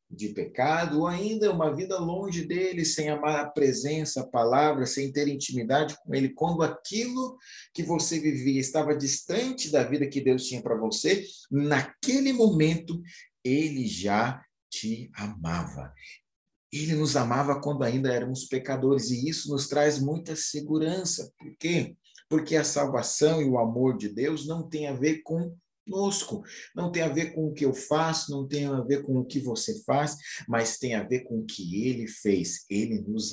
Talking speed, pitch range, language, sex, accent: 175 wpm, 130-165 Hz, Portuguese, male, Brazilian